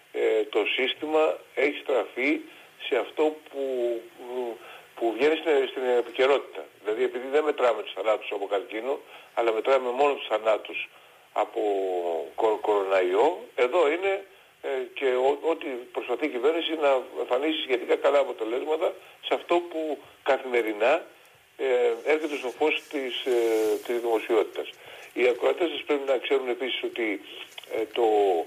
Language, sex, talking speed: Greek, male, 120 wpm